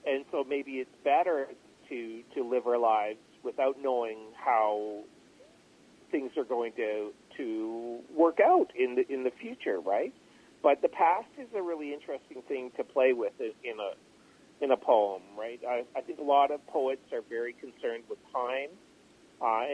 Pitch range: 110-150 Hz